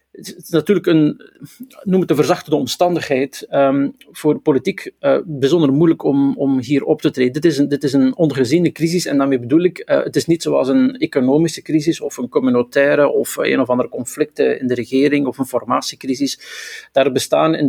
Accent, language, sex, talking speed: Dutch, Dutch, male, 190 wpm